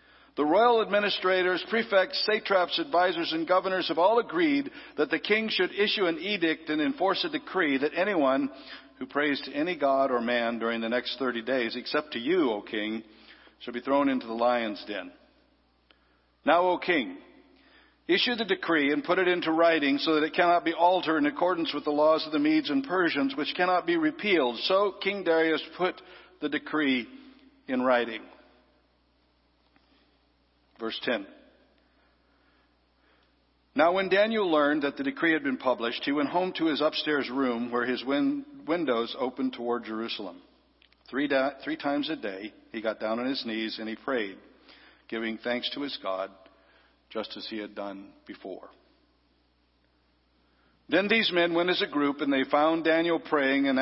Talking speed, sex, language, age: 165 wpm, male, English, 60-79